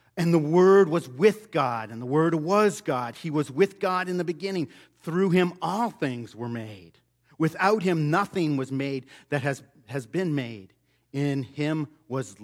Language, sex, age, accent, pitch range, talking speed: English, male, 50-69, American, 120-170 Hz, 180 wpm